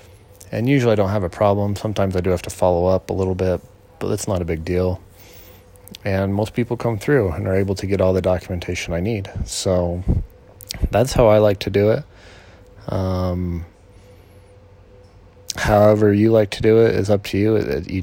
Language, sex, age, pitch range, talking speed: English, male, 30-49, 90-105 Hz, 200 wpm